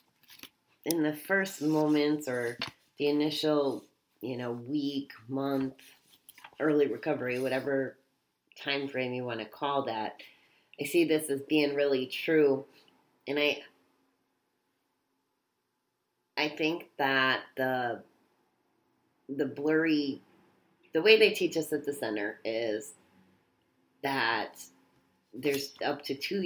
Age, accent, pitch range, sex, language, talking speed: 30-49, American, 130-150 Hz, female, English, 115 wpm